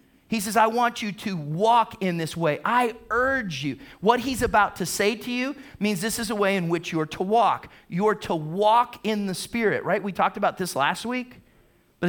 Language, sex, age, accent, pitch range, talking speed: English, male, 40-59, American, 155-220 Hz, 230 wpm